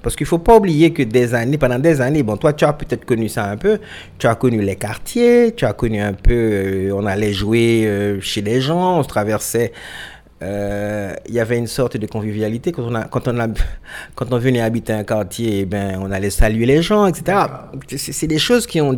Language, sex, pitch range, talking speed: French, male, 105-140 Hz, 240 wpm